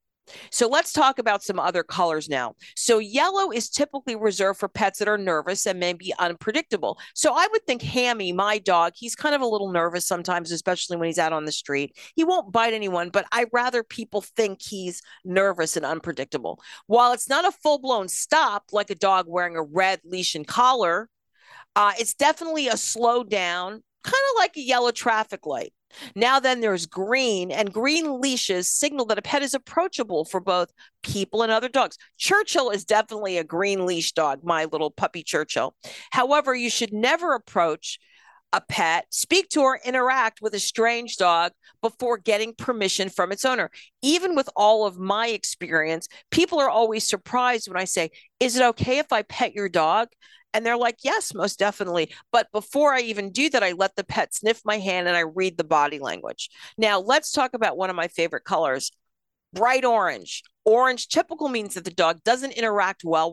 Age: 40-59